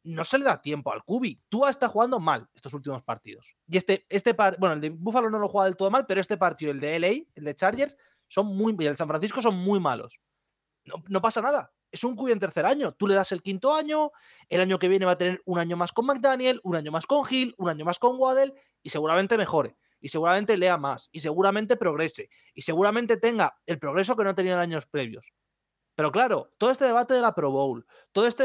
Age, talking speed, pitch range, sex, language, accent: 30-49, 245 wpm, 175-245 Hz, male, Spanish, Spanish